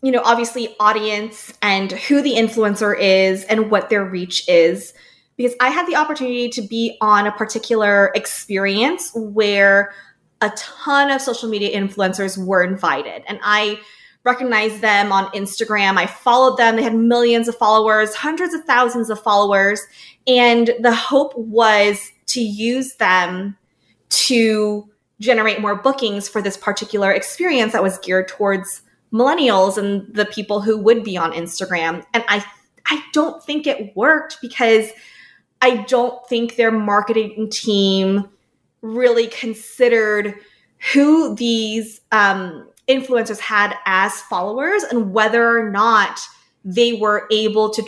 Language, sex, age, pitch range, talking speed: English, female, 20-39, 200-235 Hz, 140 wpm